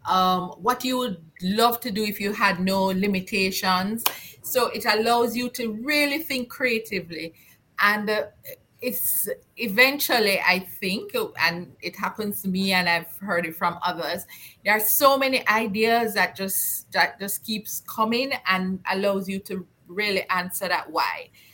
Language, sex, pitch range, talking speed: English, female, 180-230 Hz, 155 wpm